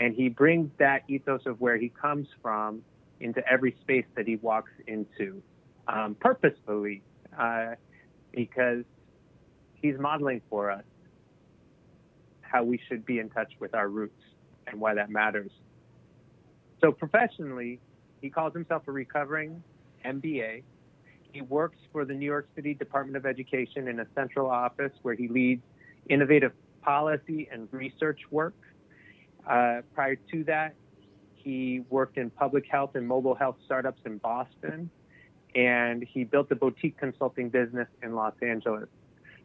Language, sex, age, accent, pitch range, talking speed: English, male, 30-49, American, 120-145 Hz, 140 wpm